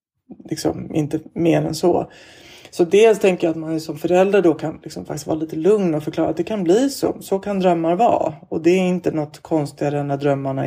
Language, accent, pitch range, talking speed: Swedish, native, 155-185 Hz, 220 wpm